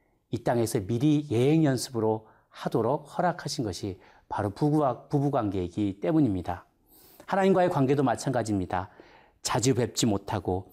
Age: 40-59